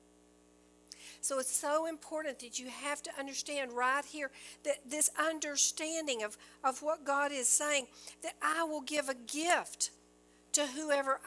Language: English